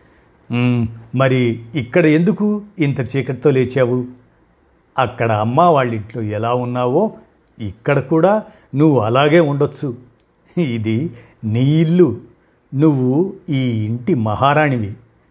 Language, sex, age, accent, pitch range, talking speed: Telugu, male, 60-79, native, 115-150 Hz, 90 wpm